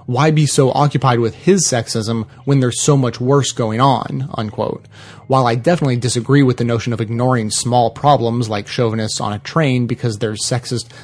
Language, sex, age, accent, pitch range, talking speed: English, male, 30-49, American, 115-140 Hz, 185 wpm